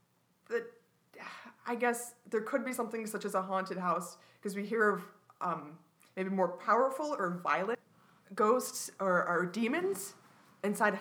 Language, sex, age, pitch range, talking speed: English, female, 20-39, 175-210 Hz, 140 wpm